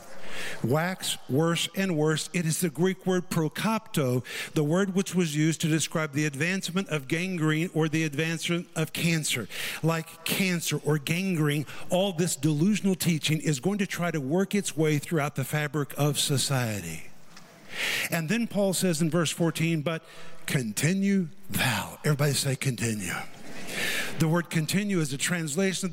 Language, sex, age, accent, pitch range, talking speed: English, male, 50-69, American, 160-210 Hz, 155 wpm